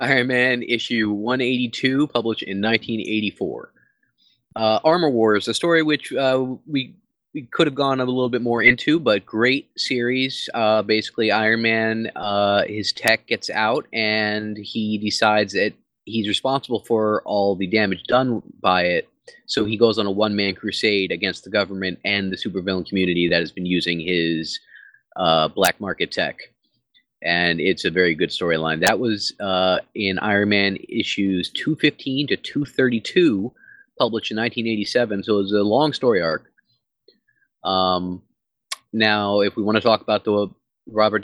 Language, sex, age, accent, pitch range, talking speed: English, male, 20-39, American, 100-120 Hz, 155 wpm